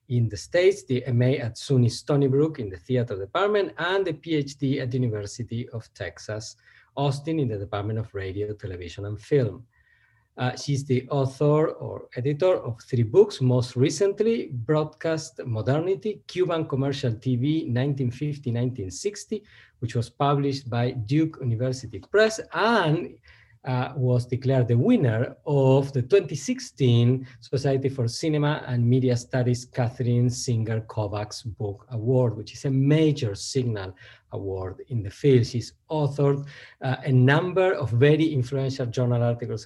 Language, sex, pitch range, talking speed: English, male, 120-150 Hz, 140 wpm